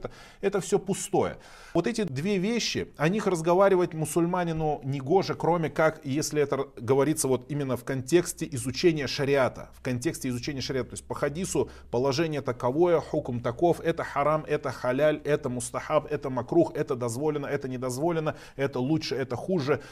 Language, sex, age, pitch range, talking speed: Russian, male, 20-39, 125-175 Hz, 155 wpm